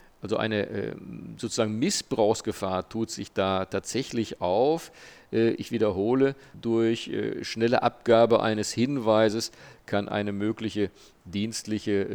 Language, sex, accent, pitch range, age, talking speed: German, male, German, 95-110 Hz, 50-69, 100 wpm